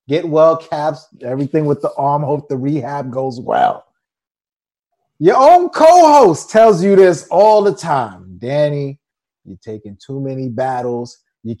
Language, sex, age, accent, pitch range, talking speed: English, male, 30-49, American, 140-190 Hz, 150 wpm